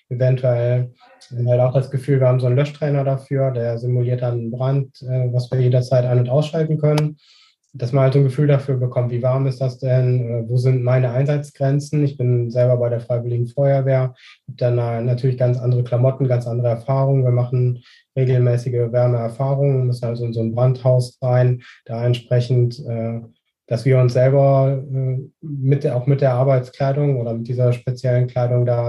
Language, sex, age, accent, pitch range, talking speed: German, male, 20-39, German, 120-135 Hz, 185 wpm